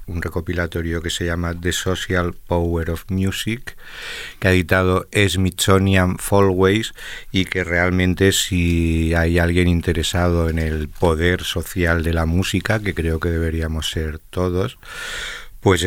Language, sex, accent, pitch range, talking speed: Spanish, male, Spanish, 85-95 Hz, 135 wpm